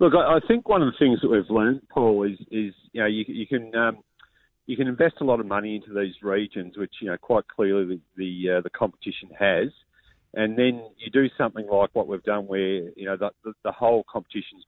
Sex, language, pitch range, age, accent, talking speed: male, English, 95-110 Hz, 40-59, Australian, 235 wpm